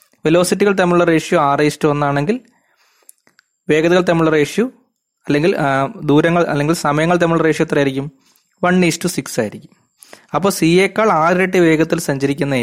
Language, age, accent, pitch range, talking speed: Malayalam, 20-39, native, 130-170 Hz, 135 wpm